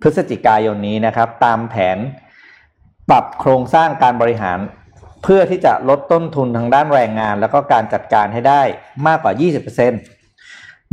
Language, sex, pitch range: Thai, male, 110-145 Hz